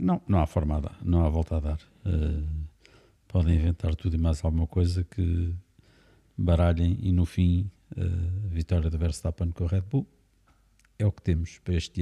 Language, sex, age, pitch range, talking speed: Portuguese, male, 50-69, 80-100 Hz, 190 wpm